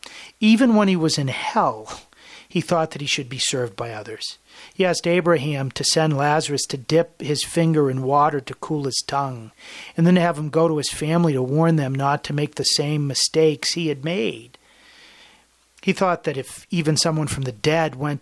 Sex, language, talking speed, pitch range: male, English, 205 wpm, 140-170 Hz